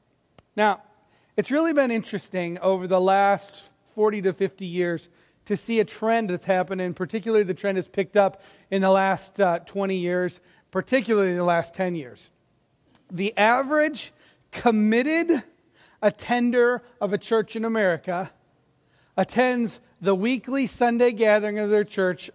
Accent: American